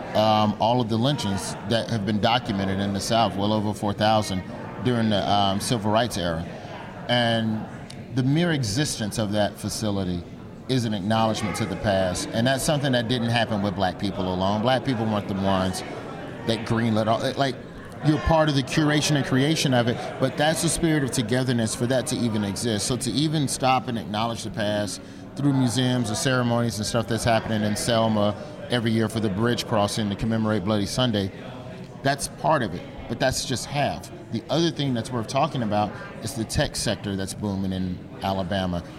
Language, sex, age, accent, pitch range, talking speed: English, male, 30-49, American, 100-125 Hz, 190 wpm